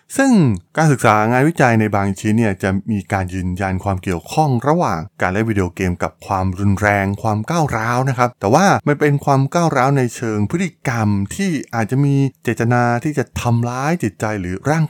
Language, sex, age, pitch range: Thai, male, 20-39, 95-130 Hz